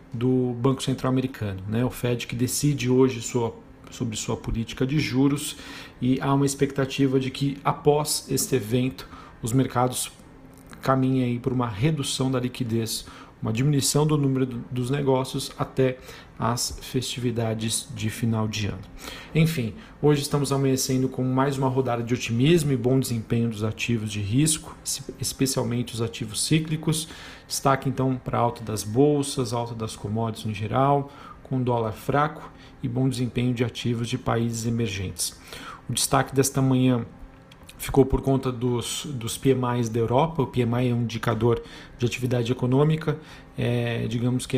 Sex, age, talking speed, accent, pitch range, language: male, 40-59, 150 wpm, Brazilian, 120-135 Hz, Portuguese